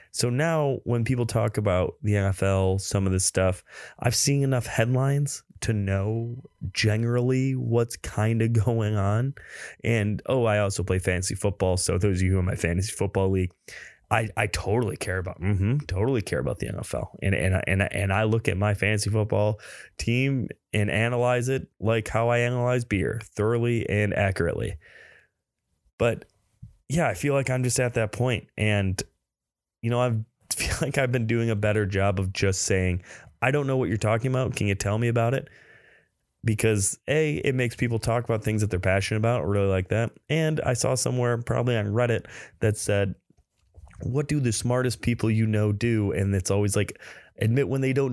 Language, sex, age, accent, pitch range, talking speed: English, male, 20-39, American, 100-120 Hz, 195 wpm